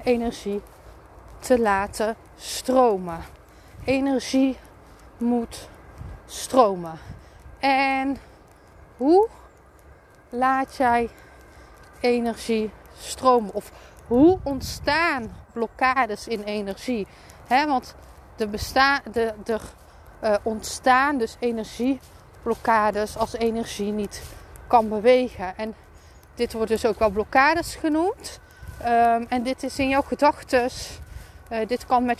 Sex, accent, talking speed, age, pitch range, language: female, Dutch, 90 wpm, 30-49, 220-265 Hz, Dutch